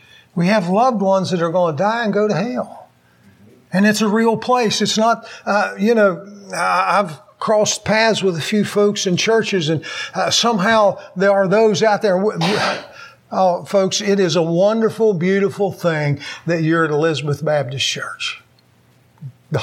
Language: English